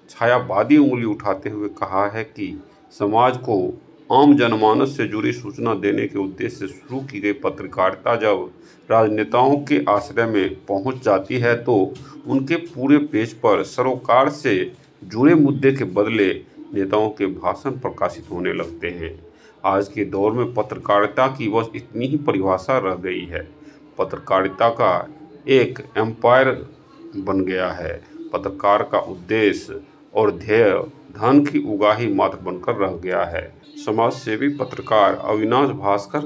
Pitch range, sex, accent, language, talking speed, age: 100-135 Hz, male, native, Hindi, 140 wpm, 50-69